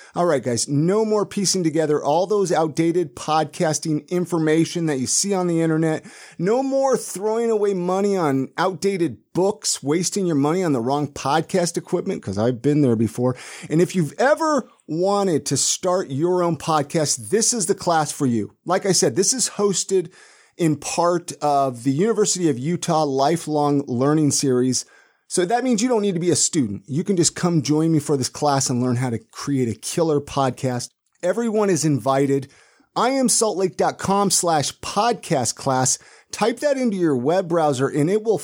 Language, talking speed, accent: English, 180 wpm, American